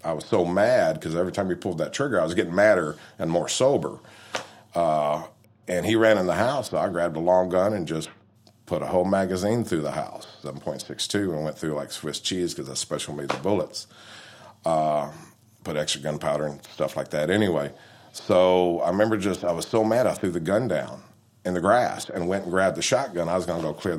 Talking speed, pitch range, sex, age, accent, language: 225 wpm, 80-100 Hz, male, 50-69, American, English